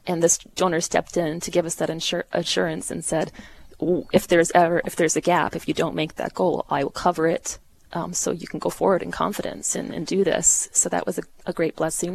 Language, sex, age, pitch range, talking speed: English, female, 20-39, 165-185 Hz, 240 wpm